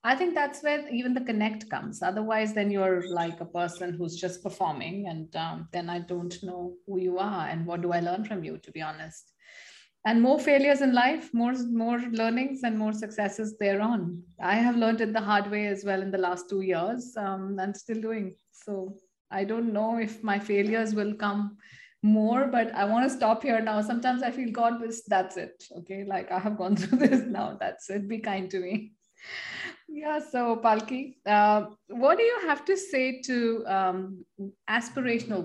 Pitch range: 190-230 Hz